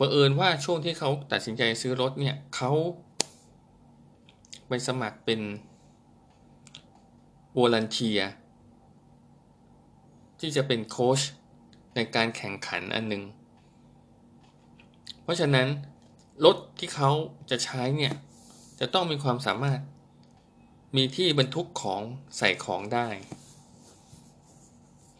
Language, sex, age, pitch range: Thai, male, 20-39, 115-140 Hz